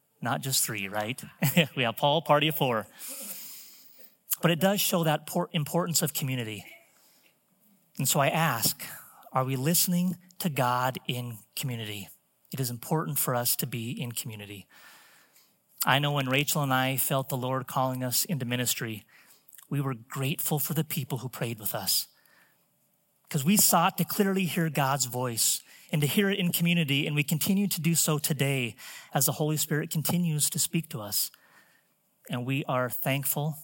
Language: English